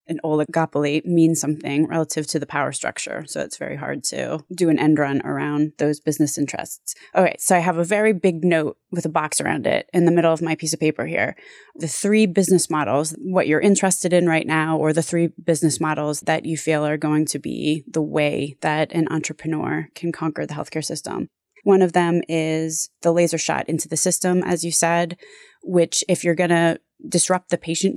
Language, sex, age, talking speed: English, female, 20-39, 210 wpm